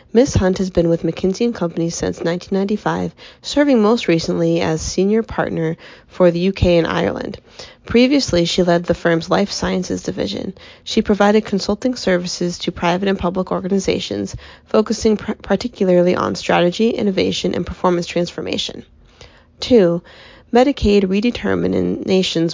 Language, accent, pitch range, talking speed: English, American, 170-205 Hz, 135 wpm